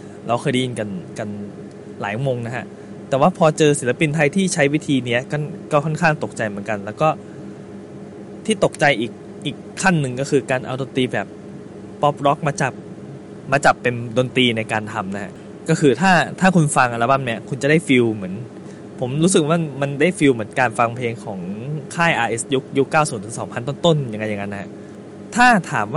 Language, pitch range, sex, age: Thai, 115-160 Hz, male, 20-39